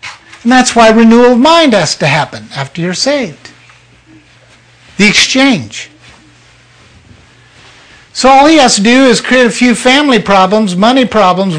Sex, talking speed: male, 145 wpm